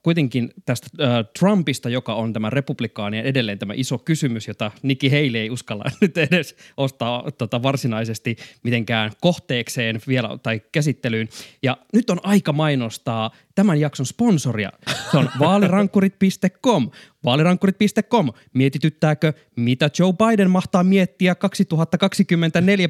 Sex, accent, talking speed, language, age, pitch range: male, native, 120 wpm, Finnish, 20-39, 115-170 Hz